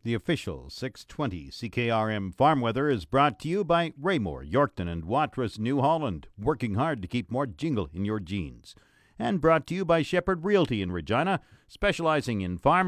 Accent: American